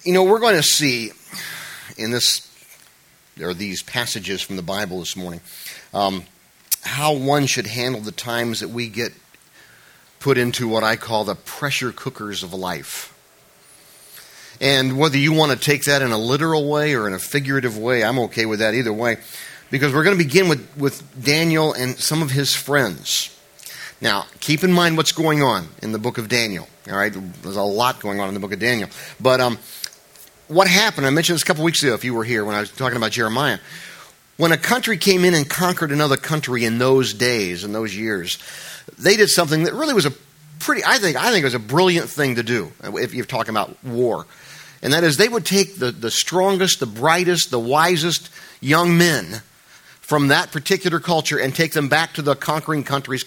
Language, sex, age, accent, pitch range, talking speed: English, male, 40-59, American, 115-160 Hz, 205 wpm